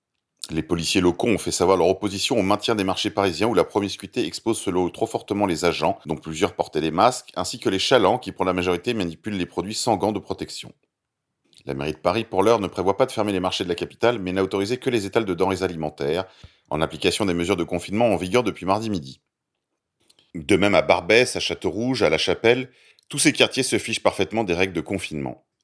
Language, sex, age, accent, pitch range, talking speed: French, male, 30-49, French, 85-110 Hz, 230 wpm